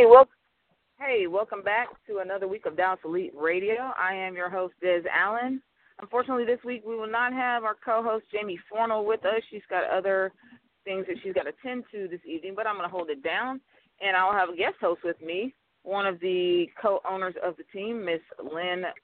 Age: 40-59